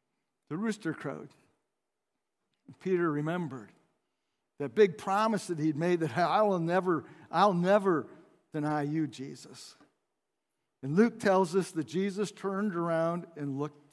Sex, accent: male, American